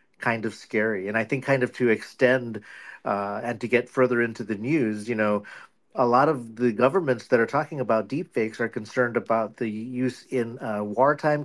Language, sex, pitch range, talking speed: English, male, 110-135 Hz, 205 wpm